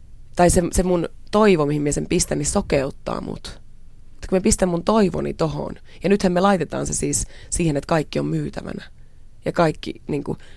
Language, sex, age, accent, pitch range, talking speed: Finnish, female, 20-39, native, 150-205 Hz, 185 wpm